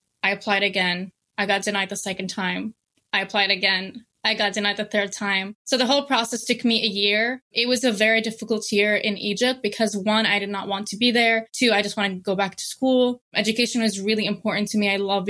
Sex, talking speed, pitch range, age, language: female, 235 wpm, 200-235 Hz, 20-39, English